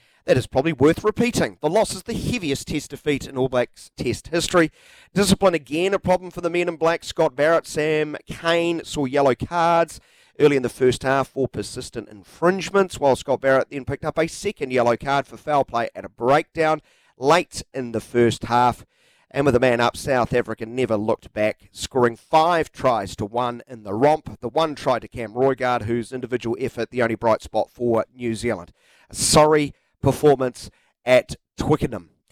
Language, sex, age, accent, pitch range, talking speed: English, male, 40-59, Australian, 120-160 Hz, 185 wpm